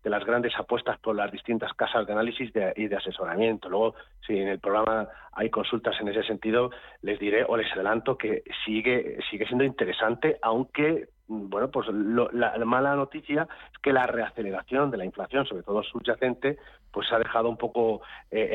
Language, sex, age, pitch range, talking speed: Spanish, male, 40-59, 110-130 Hz, 190 wpm